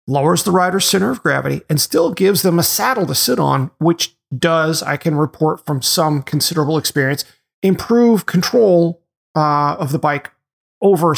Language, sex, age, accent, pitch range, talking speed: English, male, 40-59, American, 135-175 Hz, 165 wpm